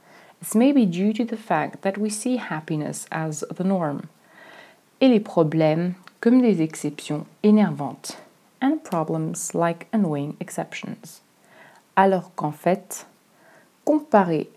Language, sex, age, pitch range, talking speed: French, female, 30-49, 160-210 Hz, 125 wpm